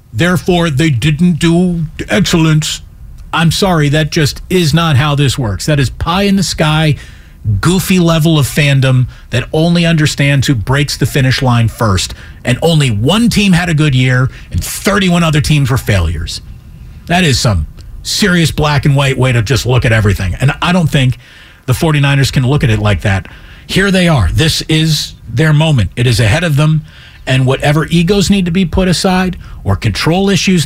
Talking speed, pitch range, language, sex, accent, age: 185 wpm, 115-165 Hz, English, male, American, 40-59